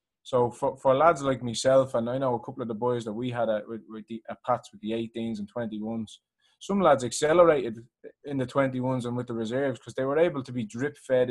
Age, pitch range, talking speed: 20-39, 115-140 Hz, 240 wpm